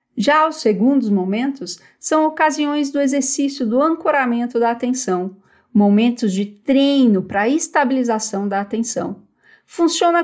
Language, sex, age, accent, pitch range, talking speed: Portuguese, female, 50-69, Brazilian, 210-280 Hz, 125 wpm